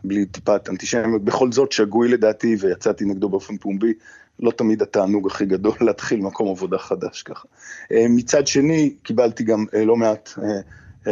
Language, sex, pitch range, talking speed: Hebrew, male, 100-130 Hz, 150 wpm